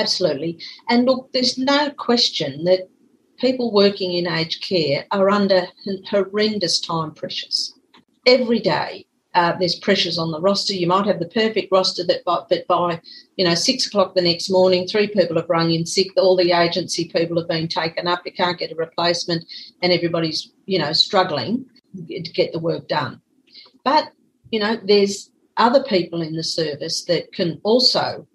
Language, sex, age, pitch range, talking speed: English, female, 40-59, 170-215 Hz, 175 wpm